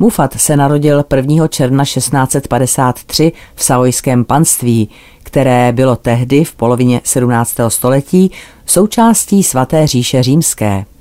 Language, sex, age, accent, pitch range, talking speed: Czech, female, 40-59, native, 120-155 Hz, 110 wpm